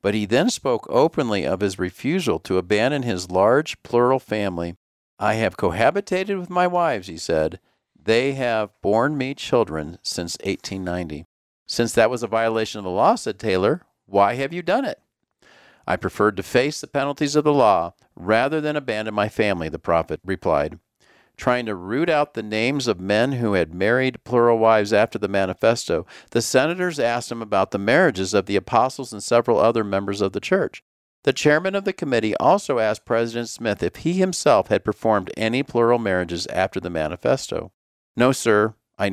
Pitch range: 95-130 Hz